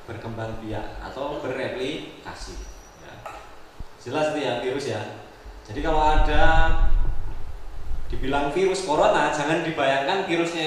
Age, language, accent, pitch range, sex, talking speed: 20-39, Indonesian, native, 105-150 Hz, male, 105 wpm